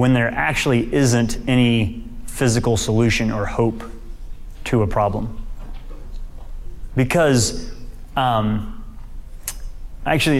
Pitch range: 110-125 Hz